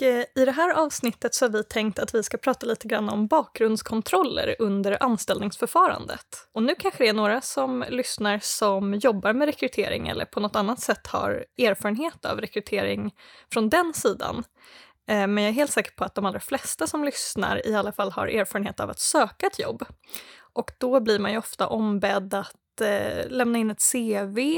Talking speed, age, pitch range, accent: 185 wpm, 20-39, 210-270 Hz, native